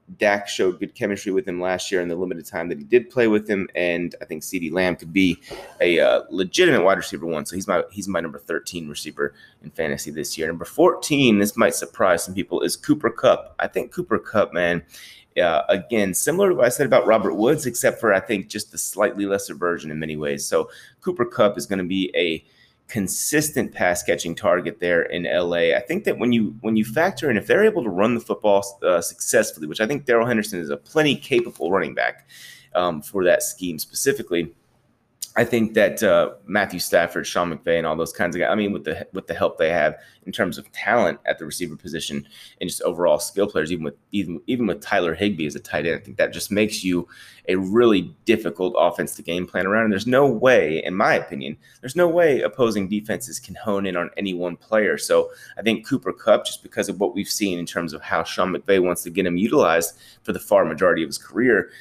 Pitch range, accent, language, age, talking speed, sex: 85-110 Hz, American, English, 30-49, 230 wpm, male